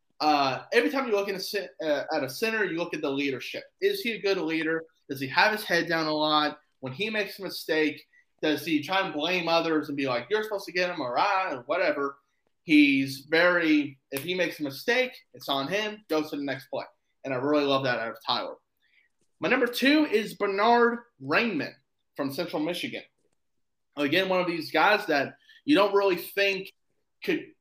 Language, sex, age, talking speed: English, male, 20-39, 200 wpm